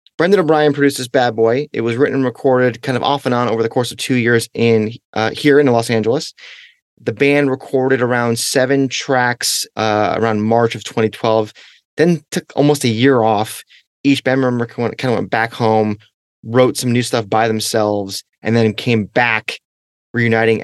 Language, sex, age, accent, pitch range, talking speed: English, male, 30-49, American, 105-130 Hz, 185 wpm